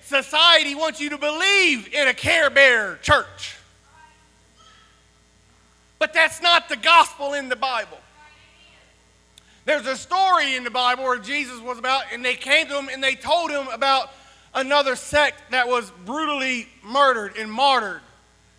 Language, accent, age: English, American, 40-59